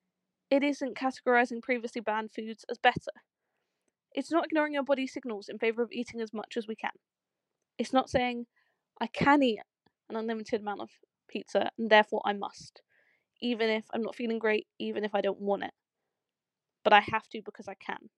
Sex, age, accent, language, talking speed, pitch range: female, 20-39, British, English, 190 wpm, 225-285 Hz